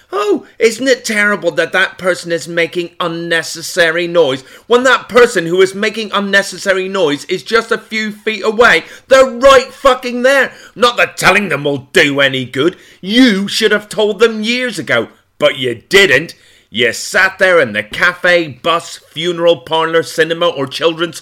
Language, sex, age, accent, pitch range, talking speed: English, male, 30-49, British, 130-200 Hz, 165 wpm